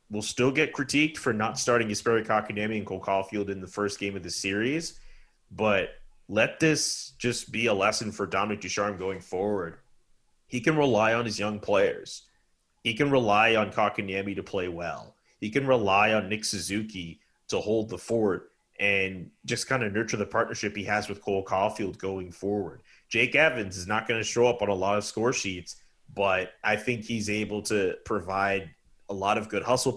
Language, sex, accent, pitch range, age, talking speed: English, male, American, 100-125 Hz, 30-49, 190 wpm